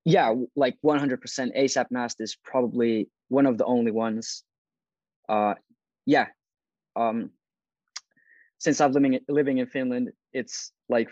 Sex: male